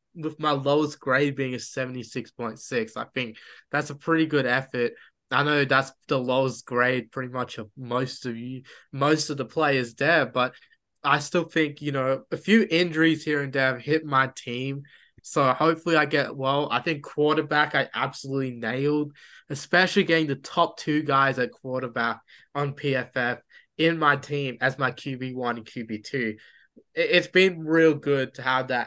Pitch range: 125-150 Hz